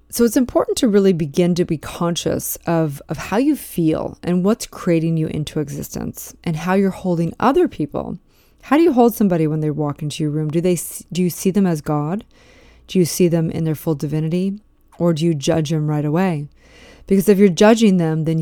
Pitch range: 160-195 Hz